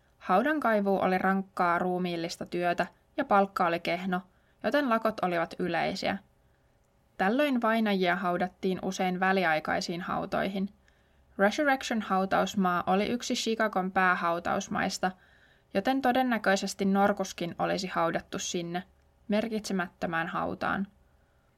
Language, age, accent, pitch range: Finnish, 20-39, native, 180-210 Hz